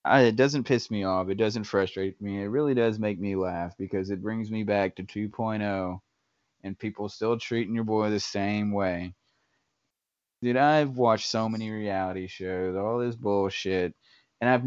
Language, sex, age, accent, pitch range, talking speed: English, male, 20-39, American, 95-115 Hz, 175 wpm